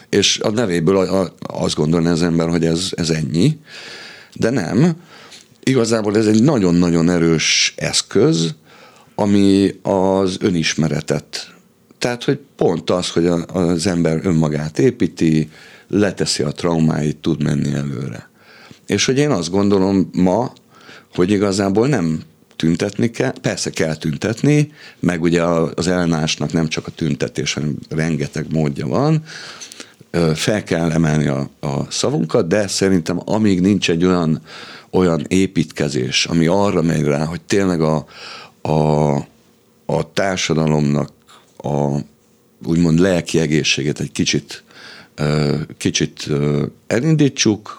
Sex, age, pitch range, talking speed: male, 50-69, 80-100 Hz, 125 wpm